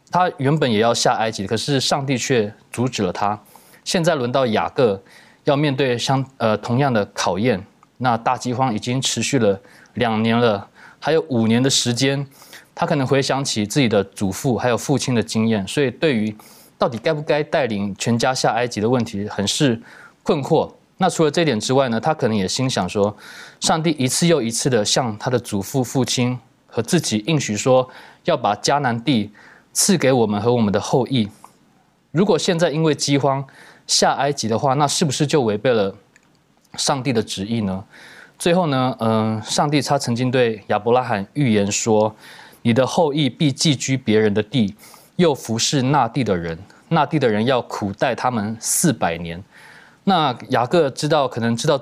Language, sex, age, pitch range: Chinese, male, 20-39, 110-145 Hz